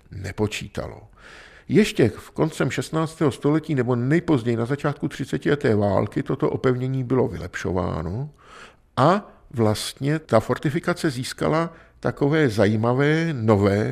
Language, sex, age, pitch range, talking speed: Czech, male, 50-69, 105-140 Hz, 105 wpm